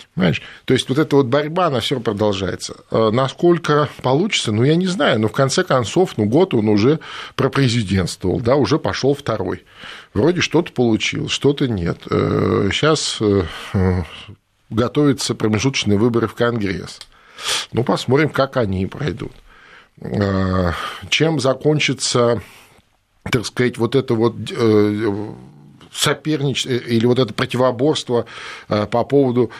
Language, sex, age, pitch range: Russian, male, 50-69, 100-130 Hz